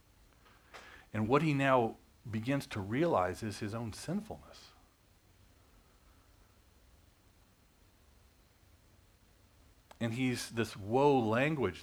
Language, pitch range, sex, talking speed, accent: English, 90-110 Hz, male, 80 wpm, American